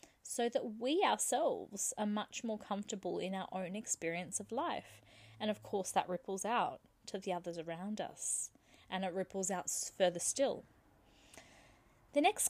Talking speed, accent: 160 wpm, Australian